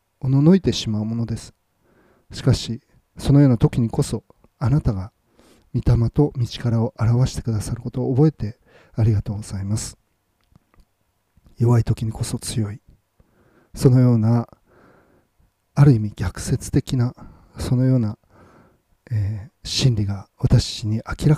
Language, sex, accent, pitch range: Japanese, male, native, 105-135 Hz